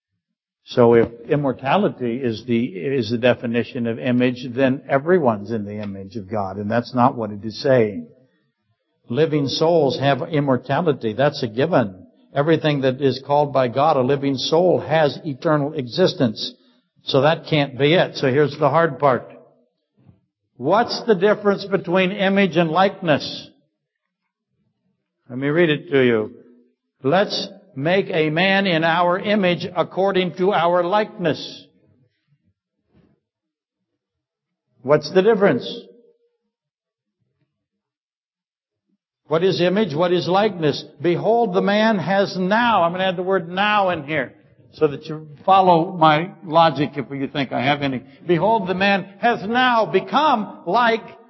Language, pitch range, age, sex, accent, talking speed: English, 130-190 Hz, 60-79, male, American, 140 wpm